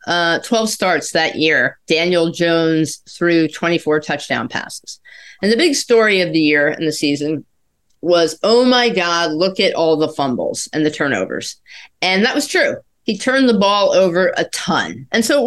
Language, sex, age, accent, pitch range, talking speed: English, female, 40-59, American, 160-215 Hz, 180 wpm